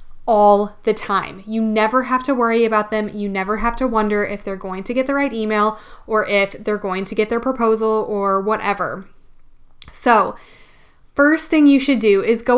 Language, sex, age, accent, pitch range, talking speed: English, female, 10-29, American, 210-250 Hz, 195 wpm